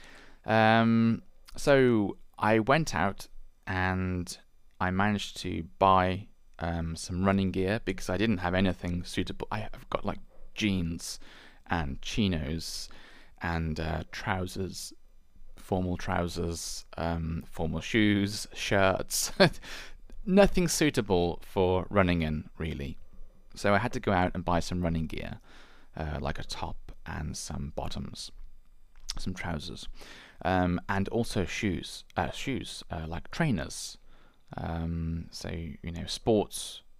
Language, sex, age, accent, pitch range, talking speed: English, male, 20-39, British, 85-100 Hz, 120 wpm